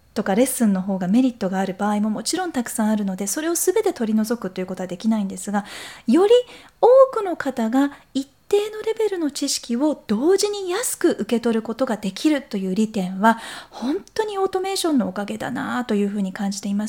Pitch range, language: 205-285 Hz, Japanese